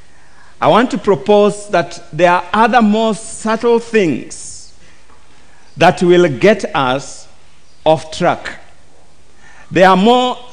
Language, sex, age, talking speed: English, male, 50-69, 115 wpm